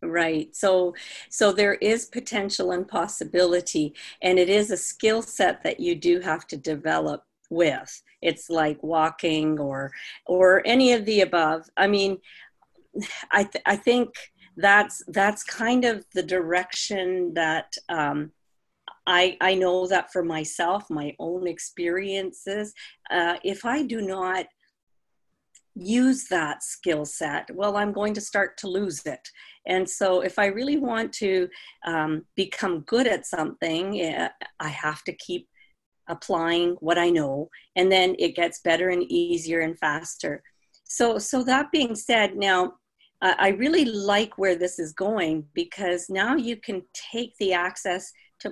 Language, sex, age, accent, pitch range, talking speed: English, female, 50-69, American, 170-210 Hz, 150 wpm